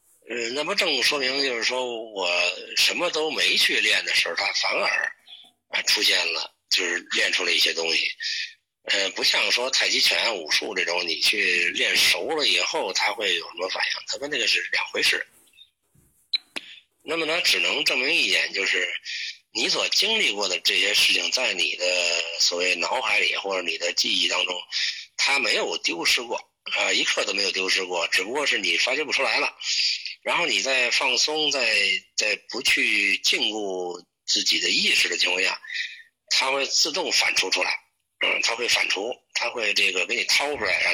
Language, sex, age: Chinese, male, 50-69